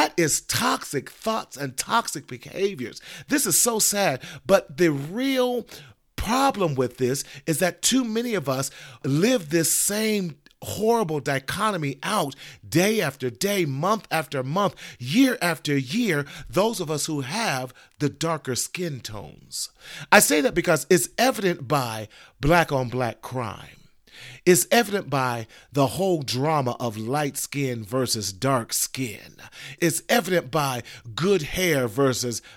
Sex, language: male, English